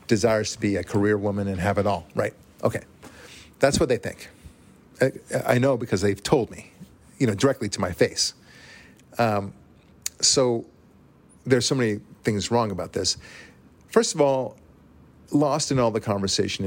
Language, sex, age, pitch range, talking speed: English, male, 50-69, 100-125 Hz, 165 wpm